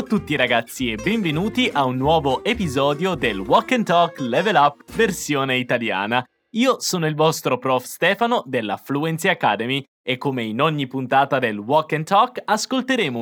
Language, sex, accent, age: Portuguese, male, Italian, 20-39